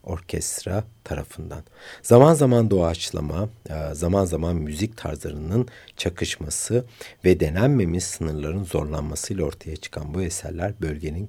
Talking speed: 100 wpm